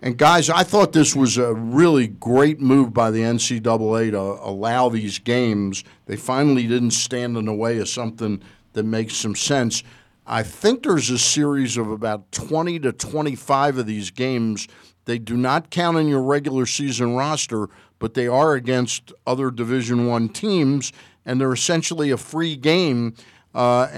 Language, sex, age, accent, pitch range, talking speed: English, male, 50-69, American, 115-145 Hz, 170 wpm